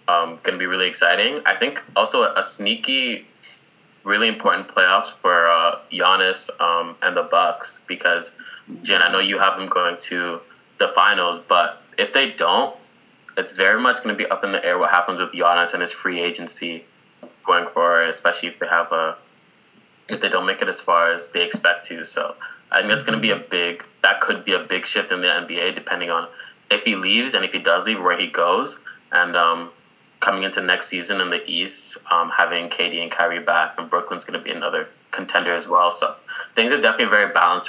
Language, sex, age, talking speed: English, male, 20-39, 215 wpm